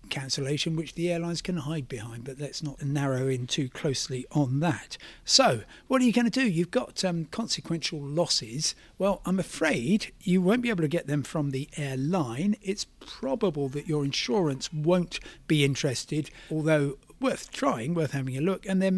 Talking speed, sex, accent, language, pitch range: 185 wpm, male, British, English, 140-190 Hz